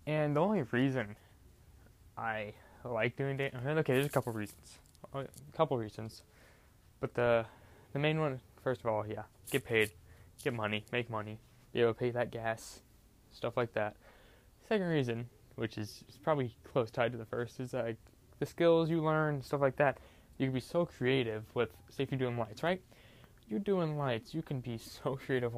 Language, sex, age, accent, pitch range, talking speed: English, male, 20-39, American, 110-140 Hz, 185 wpm